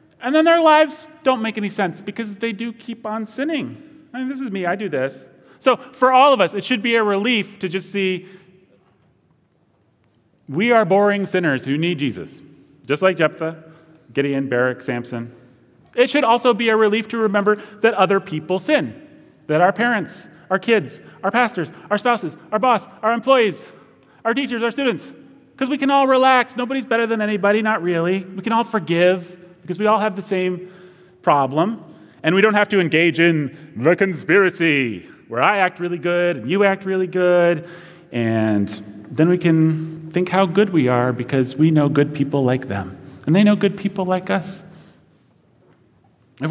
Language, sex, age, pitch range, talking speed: English, male, 30-49, 165-225 Hz, 185 wpm